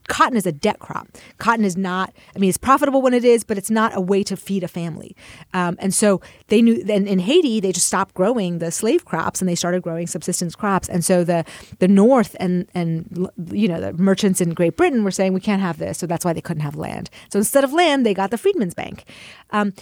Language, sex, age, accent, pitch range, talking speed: English, female, 30-49, American, 180-225 Hz, 250 wpm